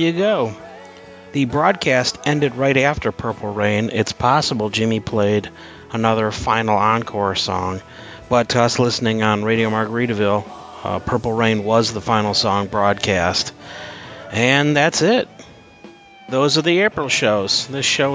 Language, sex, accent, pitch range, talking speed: English, male, American, 110-140 Hz, 140 wpm